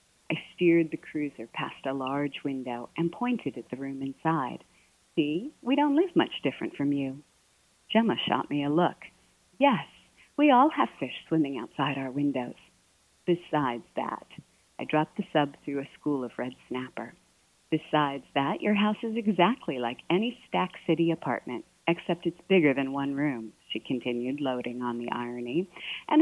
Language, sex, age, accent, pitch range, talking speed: English, female, 40-59, American, 135-175 Hz, 165 wpm